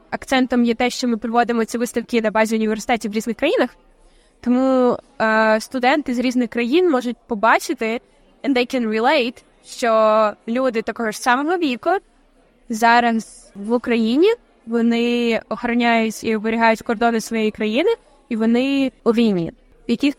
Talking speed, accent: 140 wpm, native